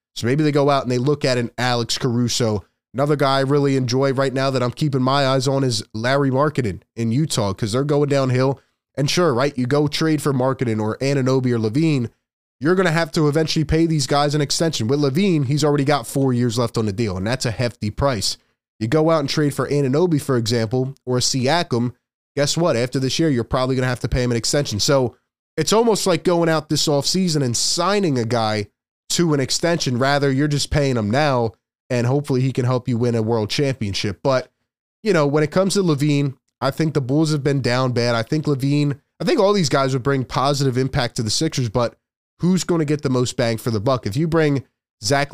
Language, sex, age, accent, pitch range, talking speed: English, male, 20-39, American, 120-150 Hz, 235 wpm